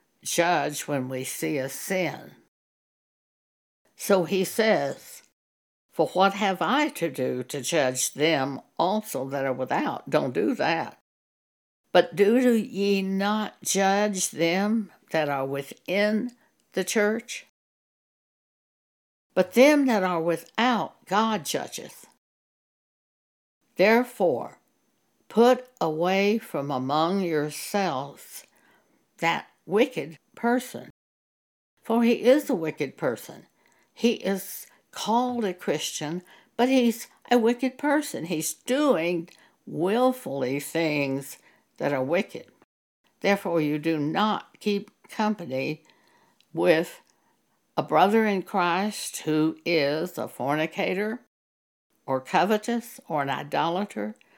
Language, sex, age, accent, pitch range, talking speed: English, female, 60-79, American, 155-220 Hz, 105 wpm